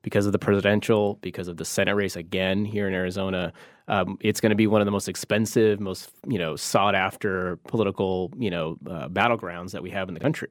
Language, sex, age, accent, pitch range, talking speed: English, male, 30-49, American, 95-115 Hz, 225 wpm